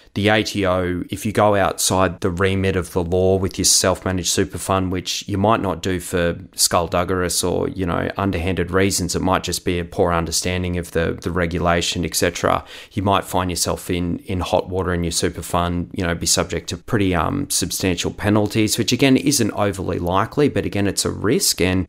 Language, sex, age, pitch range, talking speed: English, male, 30-49, 85-100 Hz, 195 wpm